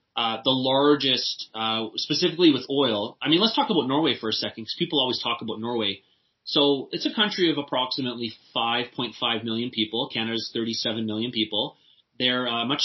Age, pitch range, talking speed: 30-49, 115-140 Hz, 175 wpm